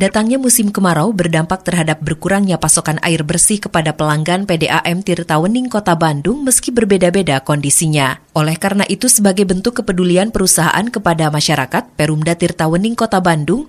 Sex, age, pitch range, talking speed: female, 20-39, 155-200 Hz, 135 wpm